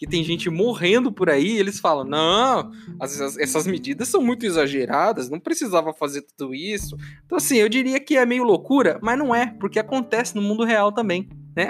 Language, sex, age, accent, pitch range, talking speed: Portuguese, male, 20-39, Brazilian, 155-220 Hz, 205 wpm